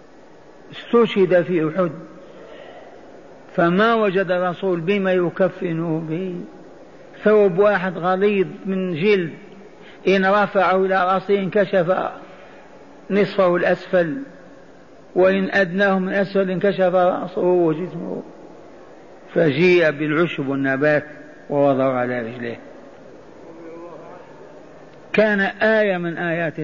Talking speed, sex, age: 85 wpm, male, 50-69